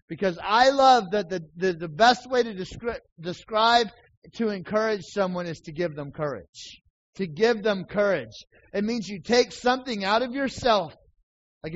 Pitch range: 180-240 Hz